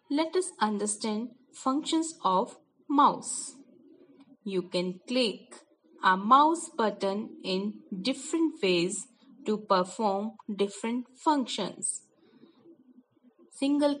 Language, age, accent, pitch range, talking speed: English, 20-39, Indian, 190-285 Hz, 85 wpm